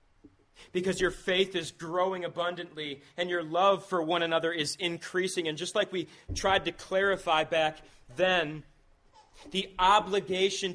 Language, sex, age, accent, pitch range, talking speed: English, male, 30-49, American, 155-190 Hz, 140 wpm